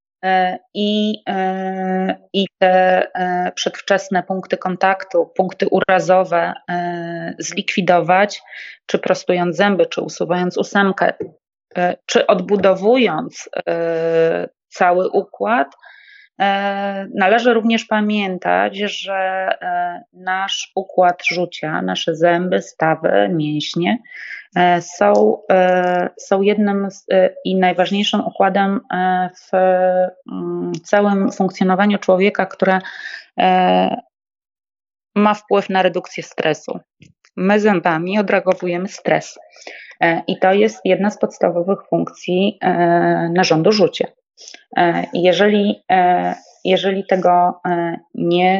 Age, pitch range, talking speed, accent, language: 30-49, 180-200 Hz, 80 wpm, native, Polish